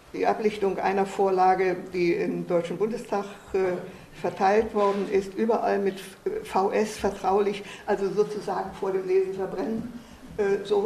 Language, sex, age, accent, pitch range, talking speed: German, female, 50-69, German, 185-225 Hz, 135 wpm